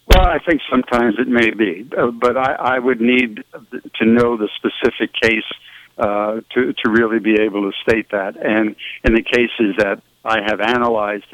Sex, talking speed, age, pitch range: male, 185 wpm, 60-79, 105-140 Hz